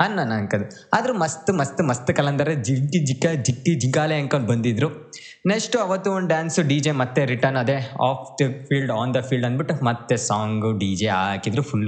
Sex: male